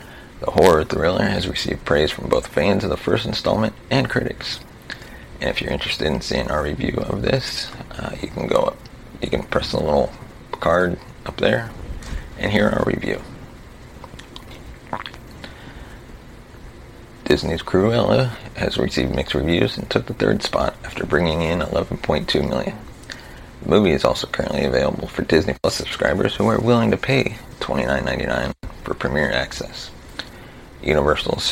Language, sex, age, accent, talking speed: English, male, 30-49, American, 145 wpm